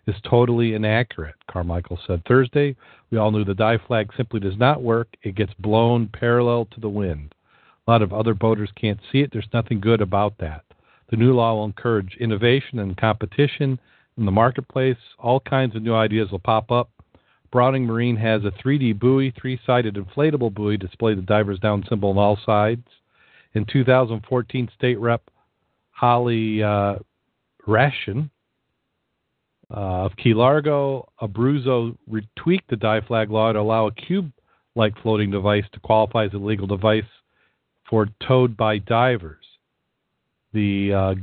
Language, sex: English, male